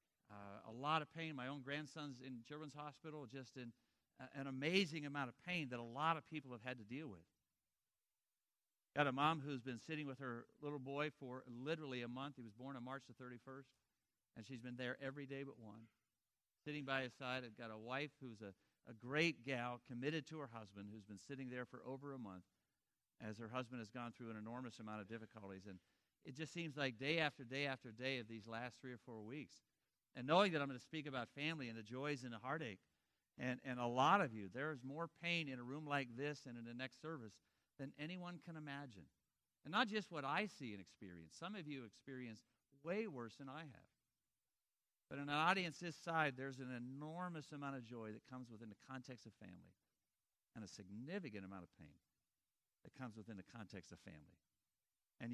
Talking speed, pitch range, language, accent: 215 wpm, 115-145 Hz, English, American